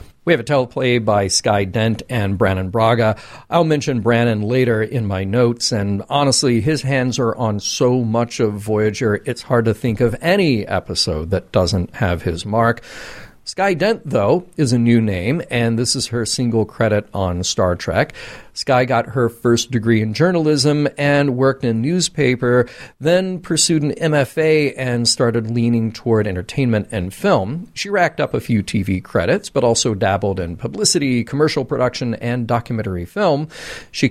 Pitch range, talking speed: 105-135 Hz, 165 wpm